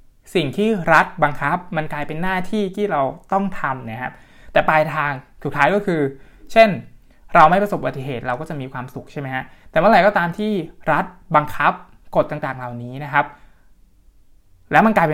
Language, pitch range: Thai, 130-180 Hz